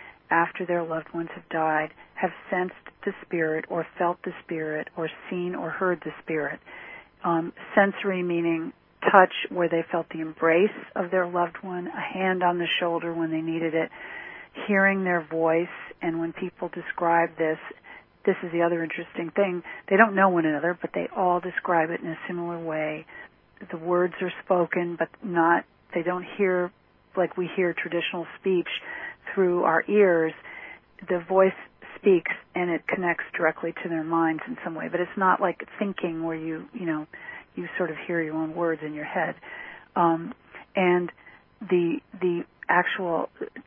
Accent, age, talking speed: American, 40-59, 170 wpm